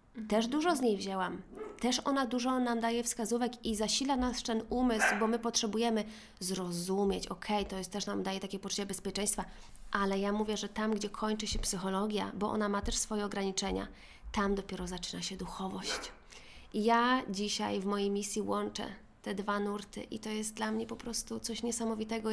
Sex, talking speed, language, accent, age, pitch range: female, 185 wpm, Polish, native, 20-39, 195-230 Hz